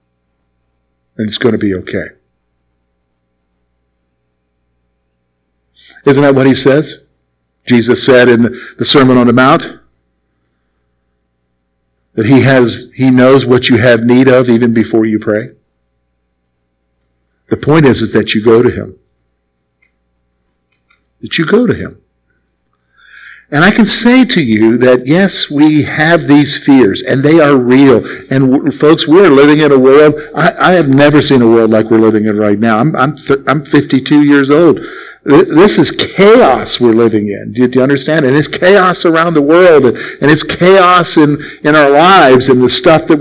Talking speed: 165 wpm